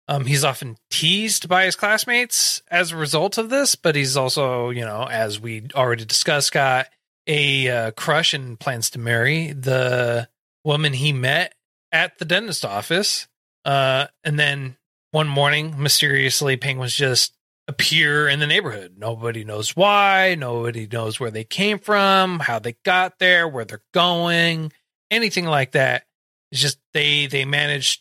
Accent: American